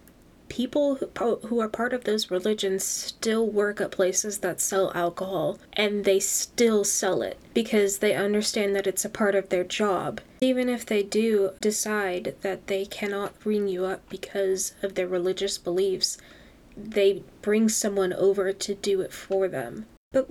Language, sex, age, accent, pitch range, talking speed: English, female, 10-29, American, 190-225 Hz, 165 wpm